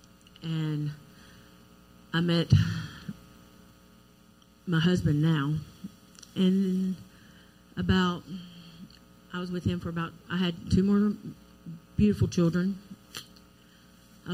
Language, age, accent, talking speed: English, 40-59, American, 90 wpm